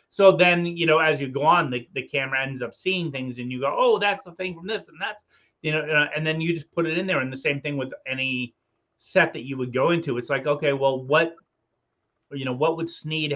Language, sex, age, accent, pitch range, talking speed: English, male, 30-49, American, 125-160 Hz, 260 wpm